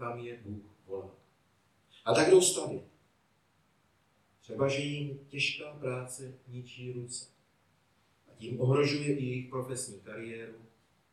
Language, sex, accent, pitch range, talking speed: Czech, male, native, 110-130 Hz, 115 wpm